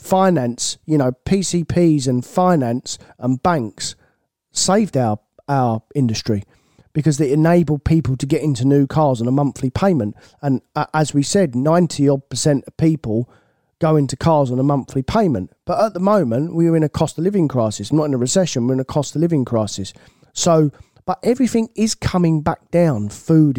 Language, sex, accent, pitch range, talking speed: English, male, British, 125-170 Hz, 185 wpm